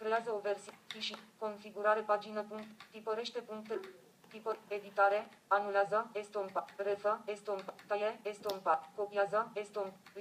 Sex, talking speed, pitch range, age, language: female, 110 wpm, 195-215 Hz, 20-39, Romanian